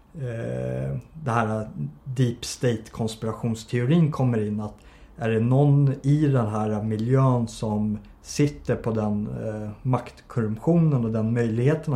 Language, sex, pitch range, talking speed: Swedish, male, 105-125 Hz, 115 wpm